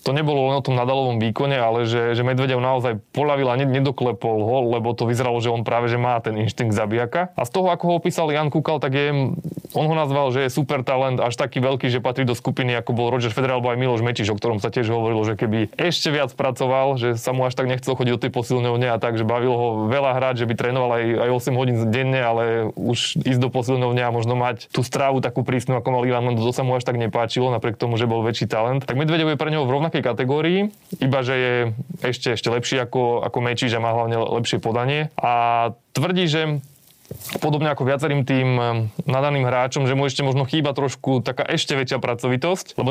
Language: Slovak